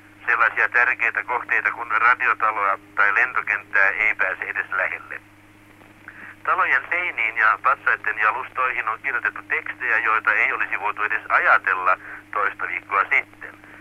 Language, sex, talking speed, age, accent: Finnish, male, 120 wpm, 60-79, native